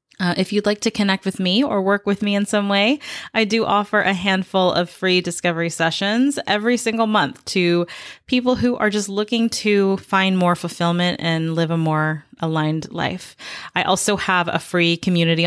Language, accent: English, American